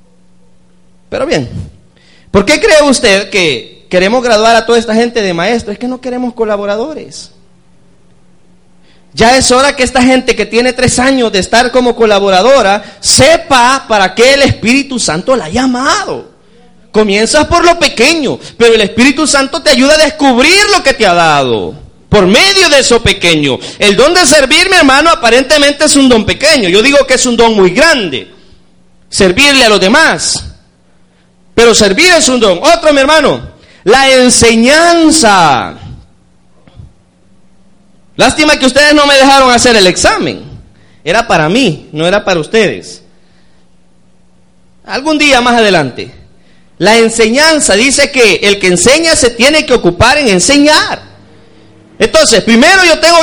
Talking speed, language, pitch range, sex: 150 wpm, Spanish, 205-285 Hz, male